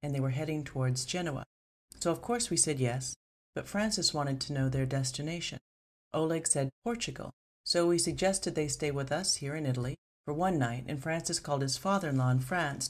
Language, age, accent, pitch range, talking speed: English, 40-59, American, 130-160 Hz, 195 wpm